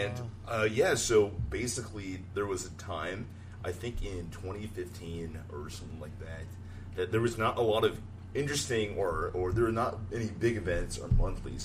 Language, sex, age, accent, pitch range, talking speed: English, male, 30-49, American, 90-105 Hz, 175 wpm